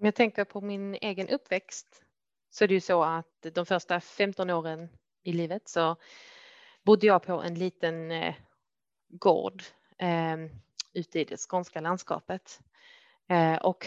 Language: Swedish